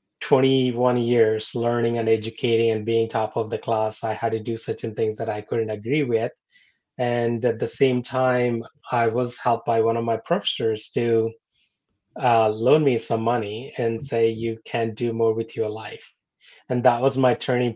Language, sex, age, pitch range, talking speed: English, male, 20-39, 110-125 Hz, 185 wpm